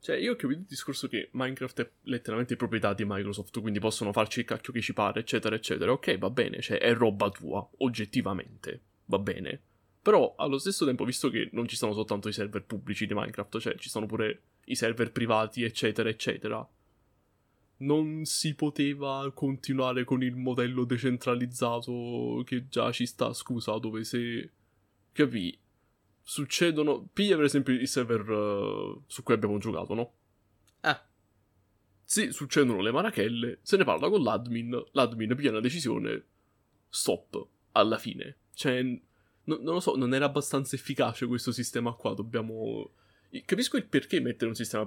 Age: 20-39